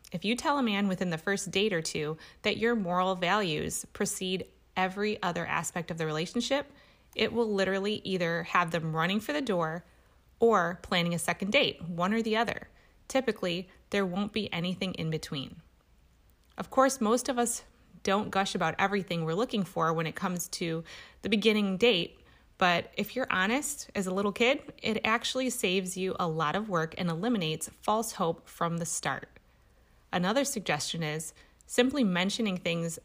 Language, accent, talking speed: English, American, 175 wpm